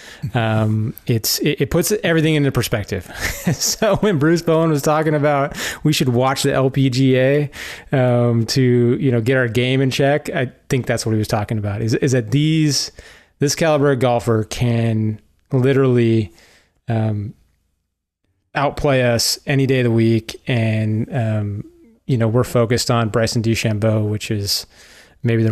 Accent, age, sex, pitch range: American, 20-39, male, 115-140 Hz